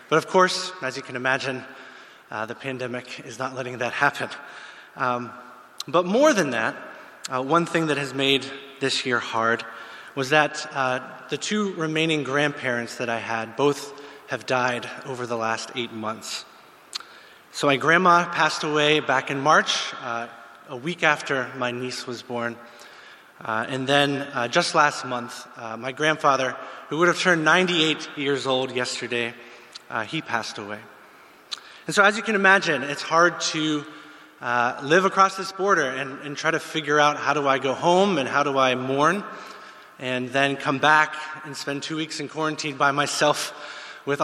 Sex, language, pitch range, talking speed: male, English, 125-155 Hz, 175 wpm